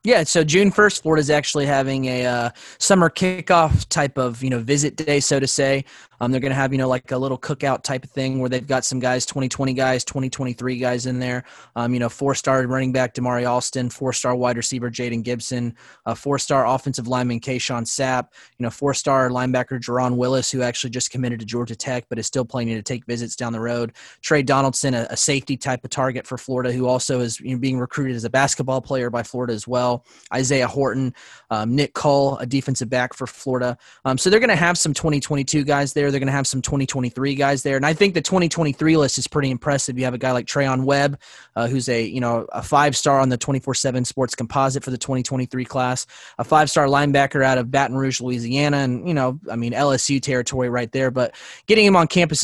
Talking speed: 220 wpm